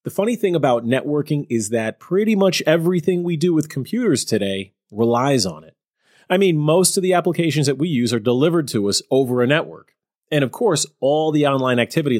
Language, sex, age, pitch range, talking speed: English, male, 30-49, 120-180 Hz, 200 wpm